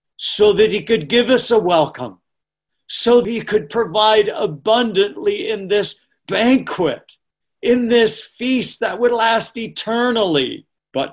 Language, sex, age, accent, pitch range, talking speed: English, male, 50-69, American, 150-220 Hz, 130 wpm